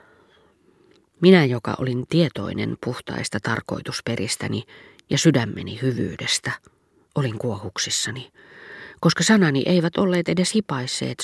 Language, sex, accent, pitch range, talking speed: Finnish, female, native, 120-160 Hz, 90 wpm